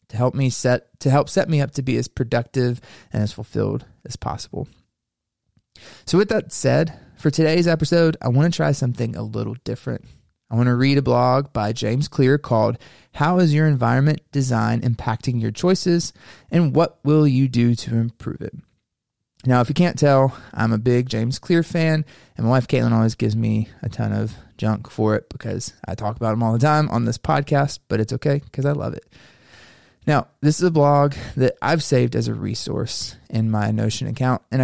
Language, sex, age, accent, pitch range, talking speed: English, male, 20-39, American, 115-145 Hz, 205 wpm